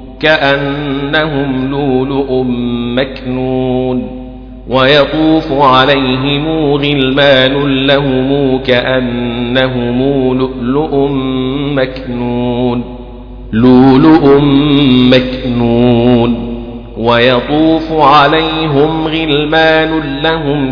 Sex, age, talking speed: male, 50-69, 40 wpm